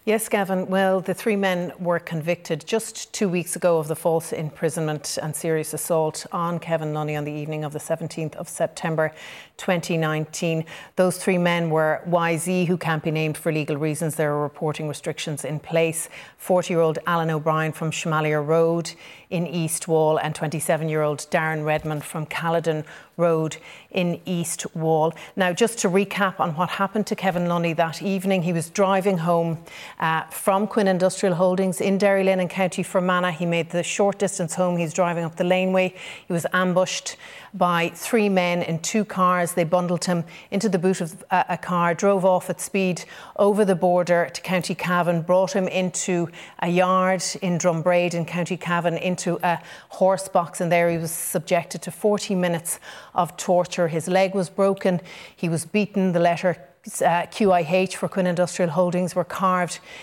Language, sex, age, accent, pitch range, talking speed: English, female, 40-59, Irish, 165-185 Hz, 175 wpm